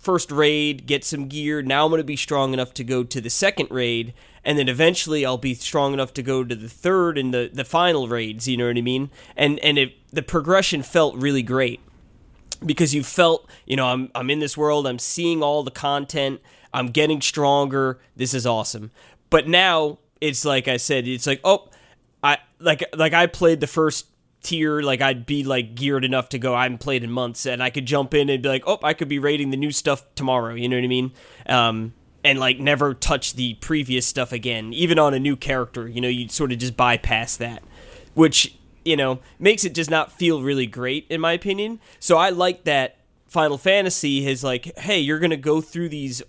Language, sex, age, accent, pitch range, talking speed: English, male, 20-39, American, 125-155 Hz, 220 wpm